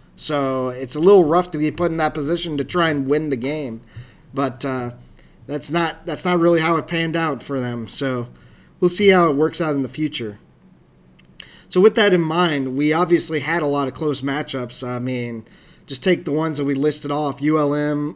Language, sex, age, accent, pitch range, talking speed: English, male, 20-39, American, 140-170 Hz, 210 wpm